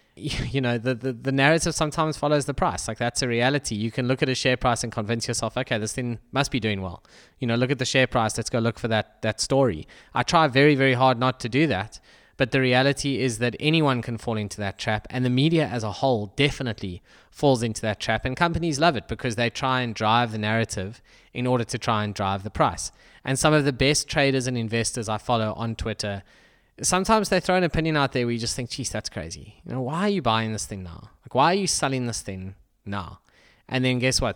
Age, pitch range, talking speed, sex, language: 20-39, 110-140 Hz, 250 wpm, male, English